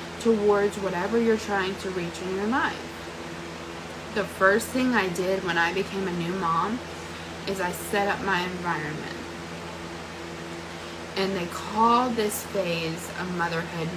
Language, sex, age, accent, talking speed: English, female, 20-39, American, 140 wpm